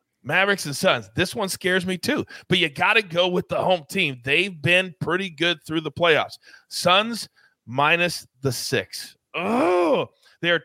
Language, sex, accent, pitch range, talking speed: English, male, American, 135-180 Hz, 175 wpm